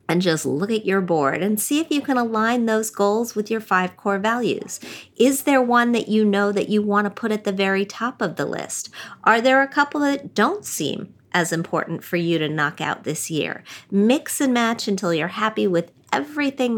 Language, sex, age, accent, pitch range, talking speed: English, female, 40-59, American, 175-220 Hz, 220 wpm